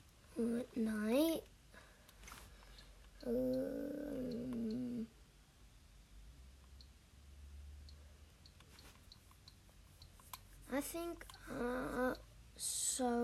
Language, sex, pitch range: English, female, 210-245 Hz